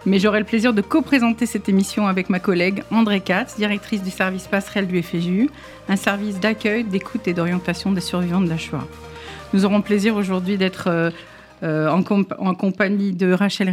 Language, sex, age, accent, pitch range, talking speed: French, female, 50-69, French, 175-205 Hz, 180 wpm